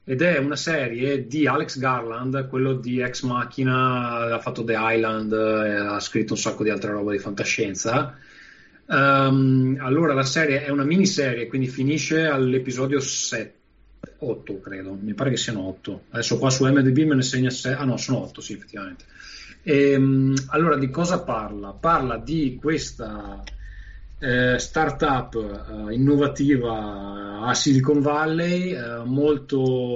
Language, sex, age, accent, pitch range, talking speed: Italian, male, 30-49, native, 115-145 Hz, 150 wpm